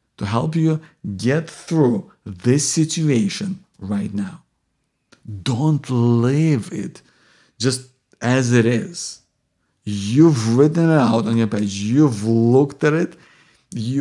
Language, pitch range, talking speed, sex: English, 120-170 Hz, 120 wpm, male